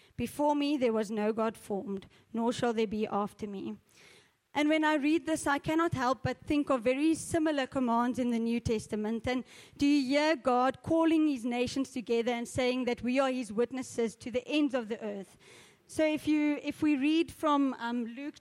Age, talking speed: 30-49, 200 wpm